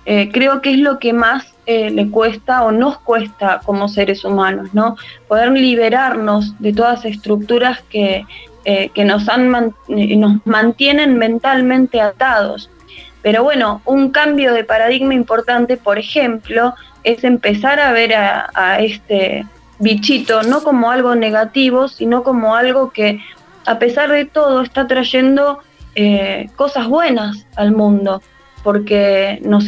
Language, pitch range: Spanish, 210-250 Hz